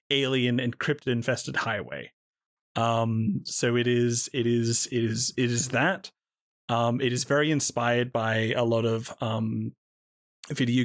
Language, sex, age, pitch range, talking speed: English, male, 30-49, 115-135 Hz, 145 wpm